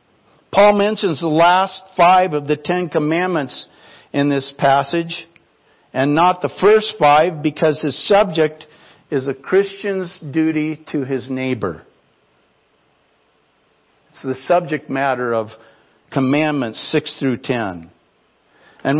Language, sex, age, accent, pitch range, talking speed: English, male, 60-79, American, 140-190 Hz, 115 wpm